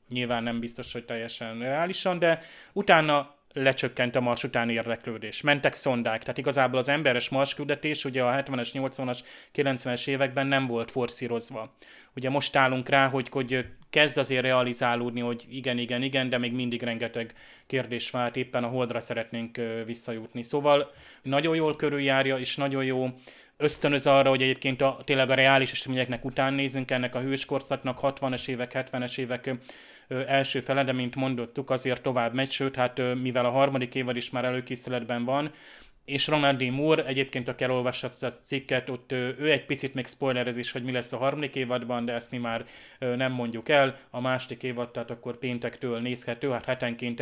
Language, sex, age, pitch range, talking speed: Hungarian, male, 20-39, 120-135 Hz, 170 wpm